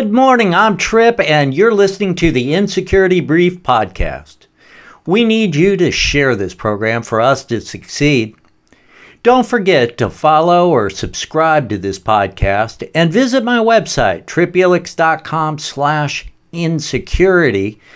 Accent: American